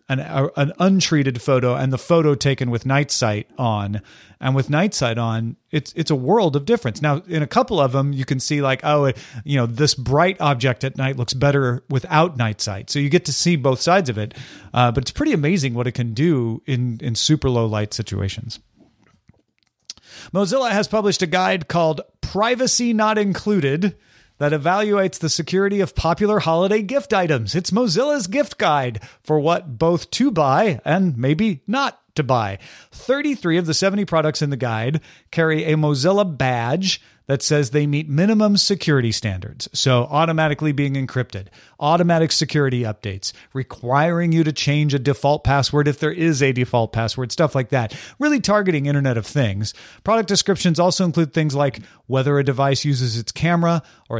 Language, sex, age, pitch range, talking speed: English, male, 40-59, 125-170 Hz, 180 wpm